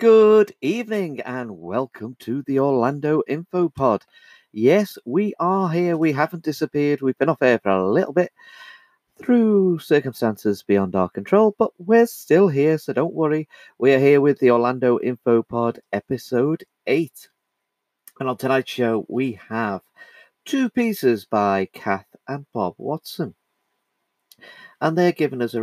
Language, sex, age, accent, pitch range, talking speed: English, male, 40-59, British, 110-175 Hz, 145 wpm